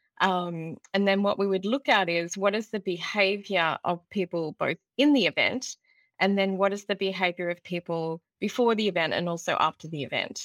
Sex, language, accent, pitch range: female, English, Australian, 170-200 Hz